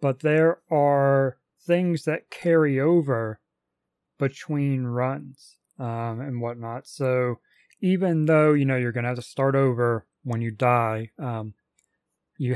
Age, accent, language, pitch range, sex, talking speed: 30-49, American, English, 120-145 Hz, male, 140 wpm